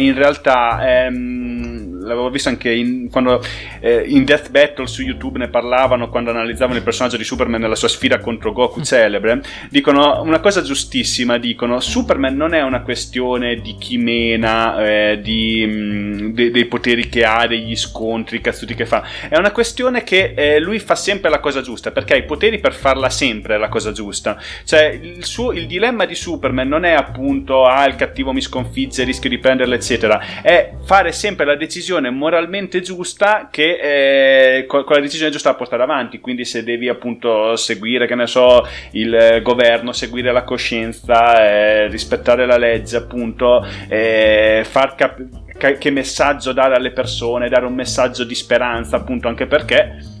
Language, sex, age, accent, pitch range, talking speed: Italian, male, 30-49, native, 115-135 Hz, 170 wpm